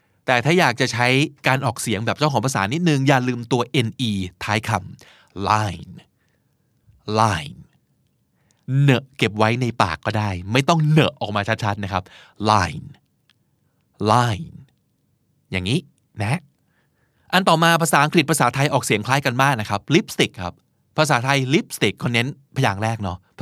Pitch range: 110-150 Hz